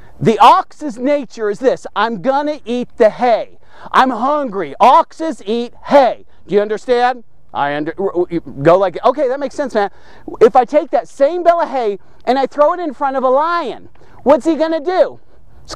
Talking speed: 190 wpm